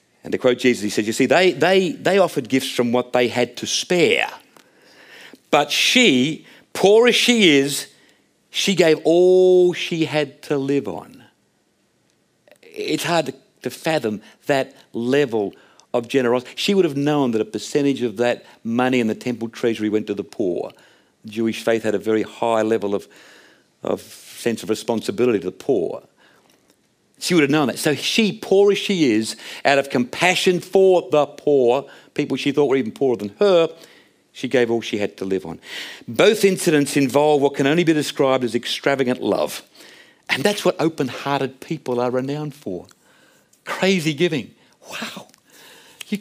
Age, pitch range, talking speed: 50-69, 120-165 Hz, 170 wpm